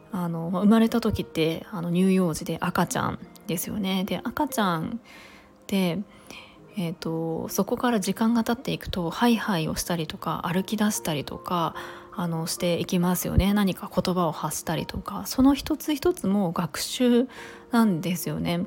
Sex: female